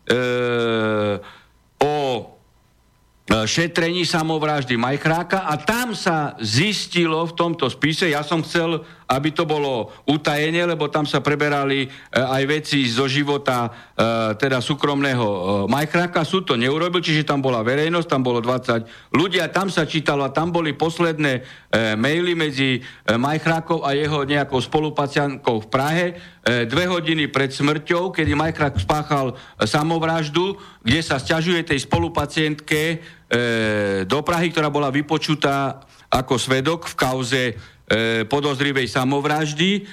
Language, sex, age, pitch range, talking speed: Slovak, male, 60-79, 130-160 Hz, 120 wpm